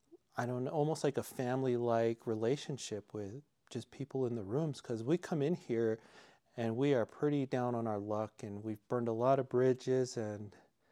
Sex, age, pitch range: male, 40-59, 110-130 Hz